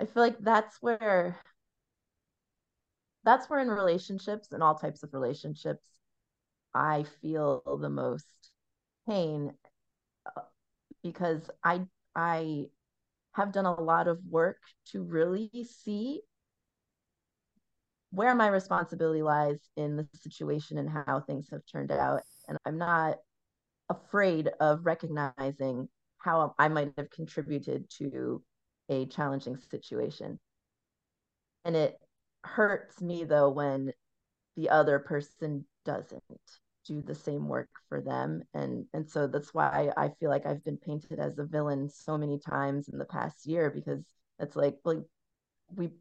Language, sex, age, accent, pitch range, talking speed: English, female, 30-49, American, 145-180 Hz, 130 wpm